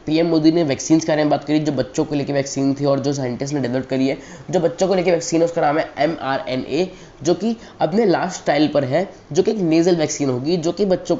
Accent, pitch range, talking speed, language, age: Indian, 140-185 Hz, 250 wpm, English, 20-39